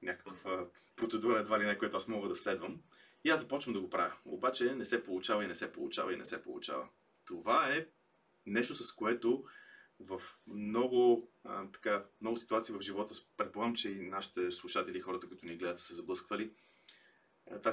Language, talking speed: Bulgarian, 180 wpm